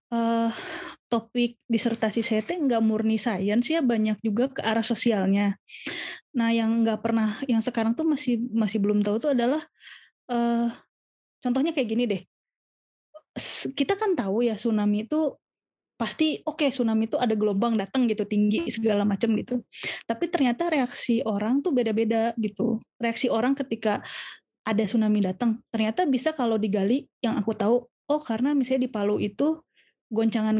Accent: native